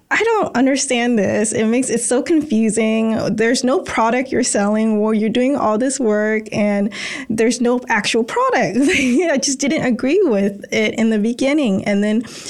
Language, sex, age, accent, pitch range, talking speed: English, female, 20-39, American, 205-255 Hz, 175 wpm